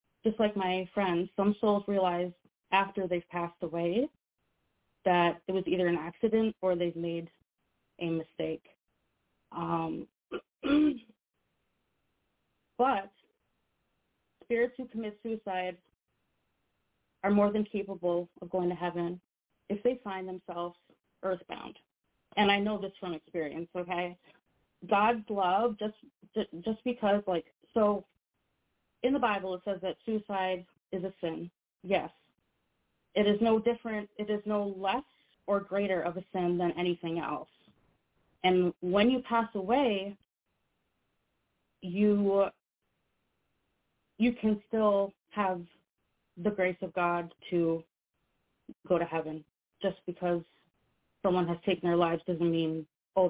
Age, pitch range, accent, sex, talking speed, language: 30-49, 170-205 Hz, American, female, 125 wpm, English